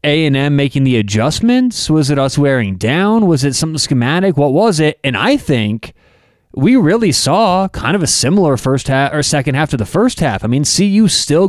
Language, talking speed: English, 215 wpm